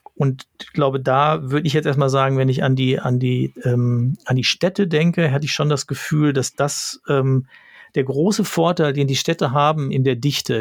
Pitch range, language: 135-160 Hz, German